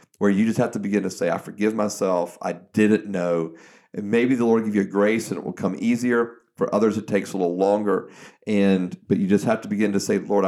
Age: 40-59